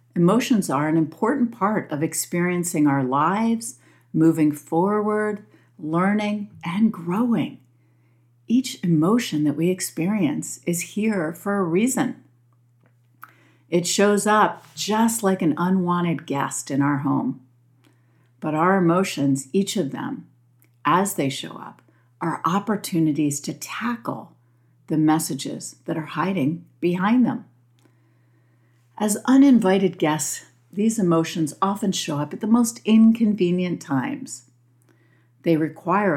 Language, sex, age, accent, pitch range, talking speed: English, female, 50-69, American, 135-190 Hz, 120 wpm